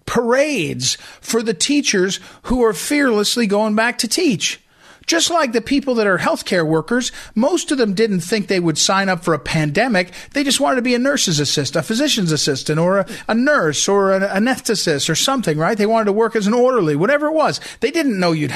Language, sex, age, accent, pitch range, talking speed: English, male, 40-59, American, 180-280 Hz, 215 wpm